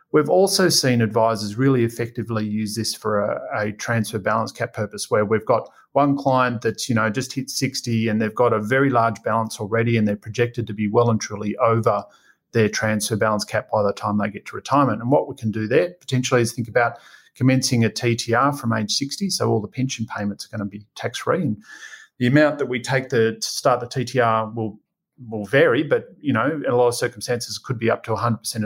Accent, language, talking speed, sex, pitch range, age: Australian, English, 225 wpm, male, 110-125 Hz, 30-49